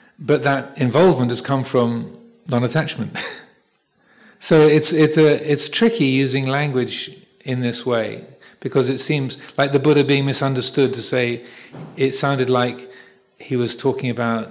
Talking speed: 145 wpm